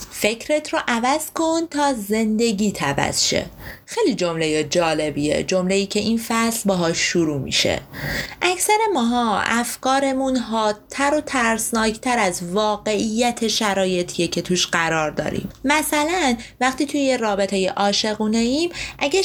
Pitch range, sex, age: 180-270 Hz, female, 30-49